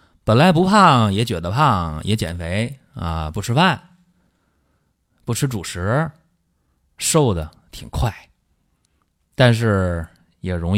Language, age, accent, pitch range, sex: Chinese, 30-49, native, 85-115 Hz, male